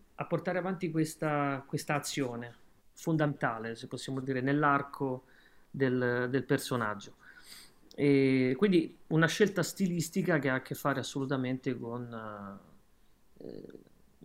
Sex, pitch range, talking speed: male, 130-160 Hz, 110 wpm